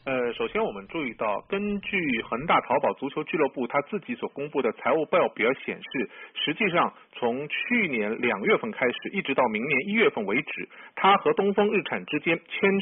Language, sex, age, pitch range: Chinese, male, 50-69, 185-270 Hz